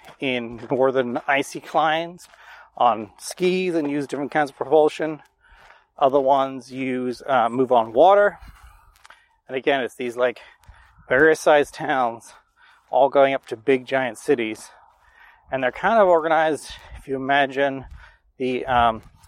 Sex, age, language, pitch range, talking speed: male, 30-49, English, 120-145 Hz, 135 wpm